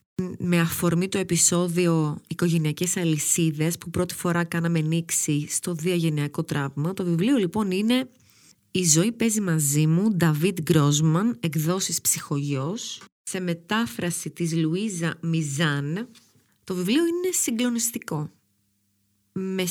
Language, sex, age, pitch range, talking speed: Greek, female, 30-49, 160-210 Hz, 115 wpm